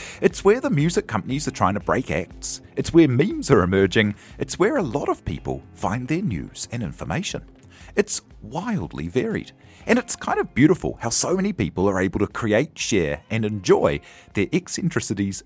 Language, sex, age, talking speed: English, male, 40-59, 185 wpm